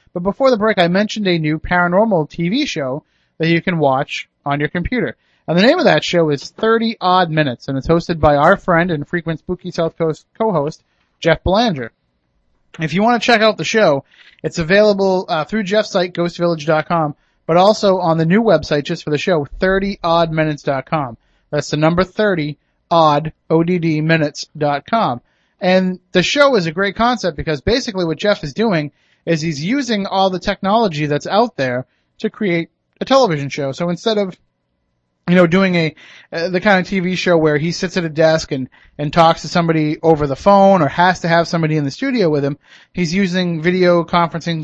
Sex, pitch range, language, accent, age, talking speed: male, 155-185 Hz, English, American, 30-49, 190 wpm